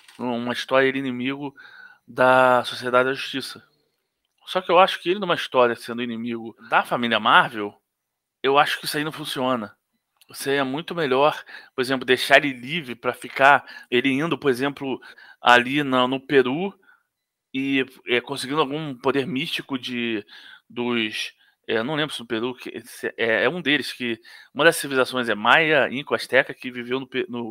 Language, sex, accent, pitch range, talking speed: Portuguese, male, Brazilian, 120-140 Hz, 170 wpm